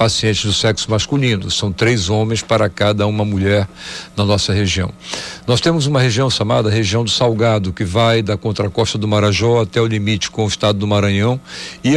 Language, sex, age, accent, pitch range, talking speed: Portuguese, male, 60-79, Brazilian, 105-140 Hz, 185 wpm